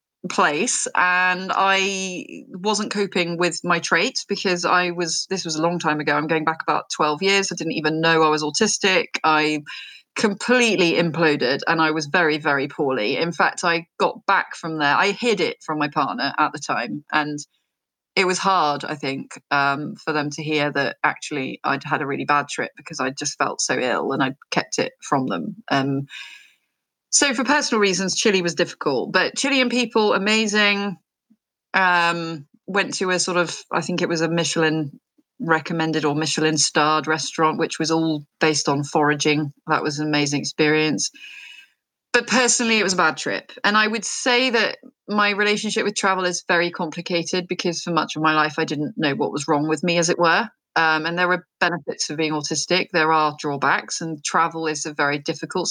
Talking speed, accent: 195 wpm, British